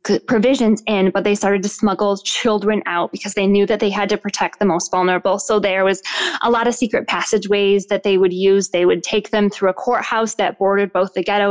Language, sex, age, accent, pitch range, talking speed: English, female, 10-29, American, 190-225 Hz, 230 wpm